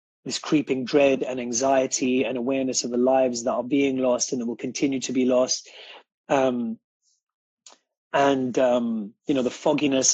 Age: 30-49